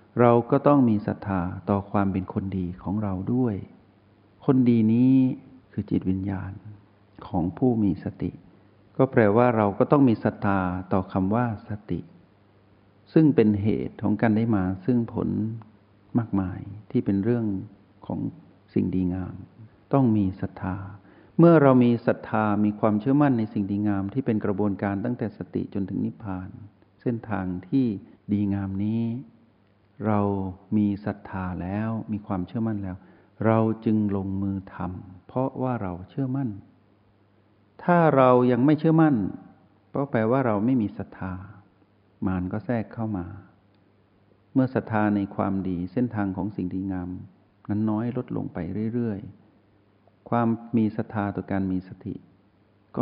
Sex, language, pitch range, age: male, Thai, 95-115 Hz, 60-79